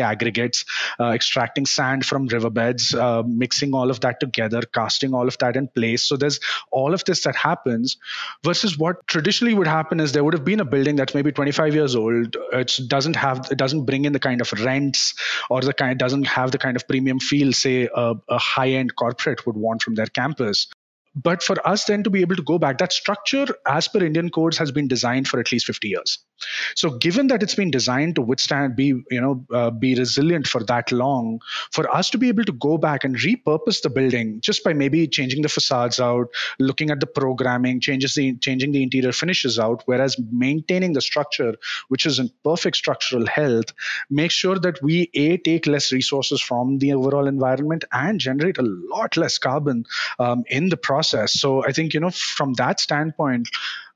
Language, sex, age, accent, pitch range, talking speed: English, male, 30-49, Indian, 125-160 Hz, 205 wpm